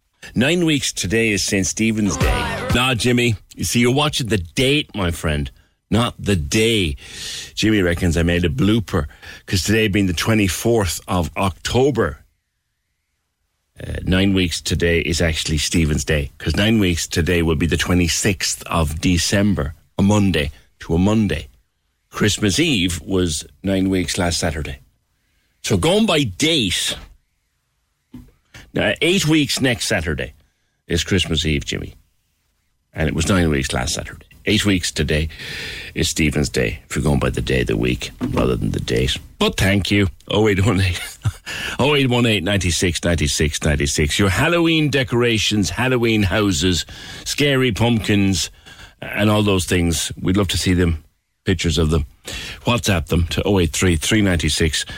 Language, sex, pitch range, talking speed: English, male, 80-105 Hz, 160 wpm